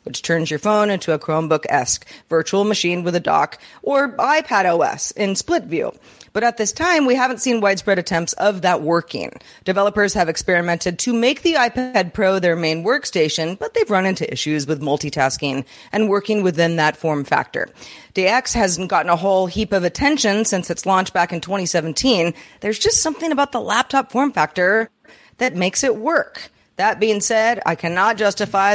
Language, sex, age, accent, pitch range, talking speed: English, female, 40-59, American, 170-230 Hz, 180 wpm